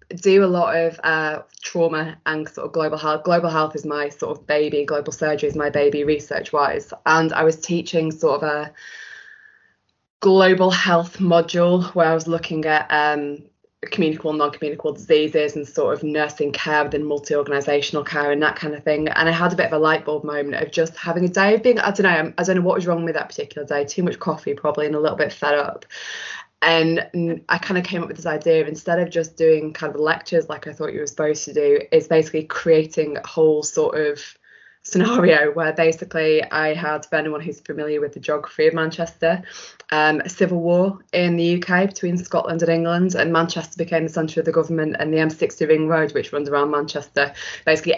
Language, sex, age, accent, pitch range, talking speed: English, female, 20-39, British, 150-170 Hz, 215 wpm